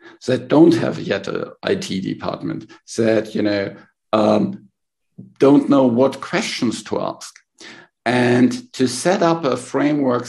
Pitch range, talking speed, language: 110-130 Hz, 135 wpm, English